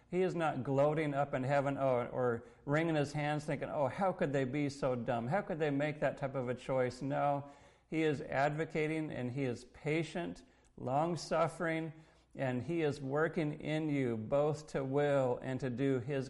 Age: 50-69